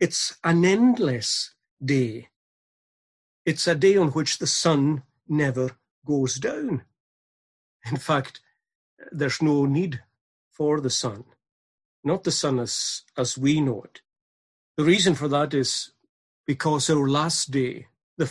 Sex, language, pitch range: male, English, 120-155 Hz